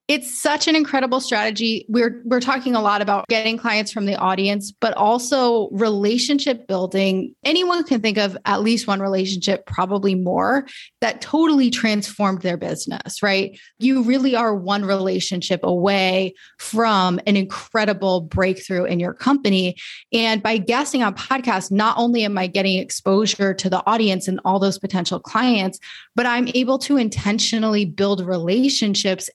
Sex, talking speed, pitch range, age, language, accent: female, 155 wpm, 190-235 Hz, 20-39, English, American